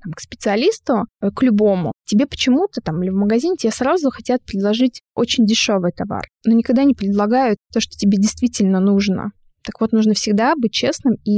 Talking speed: 175 wpm